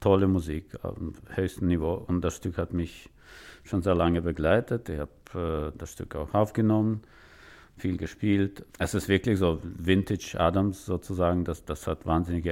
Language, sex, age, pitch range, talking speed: German, male, 50-69, 80-95 Hz, 165 wpm